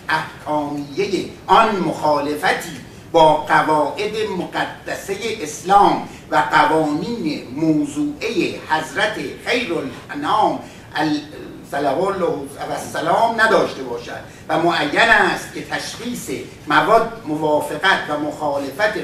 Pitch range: 145-210 Hz